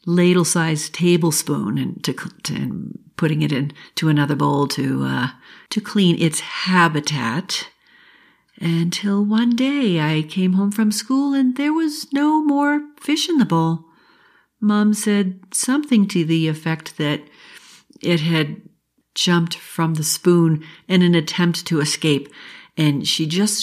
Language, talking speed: English, 140 wpm